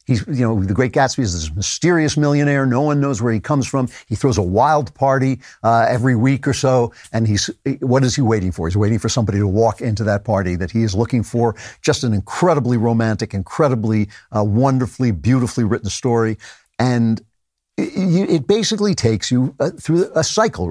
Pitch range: 110-135 Hz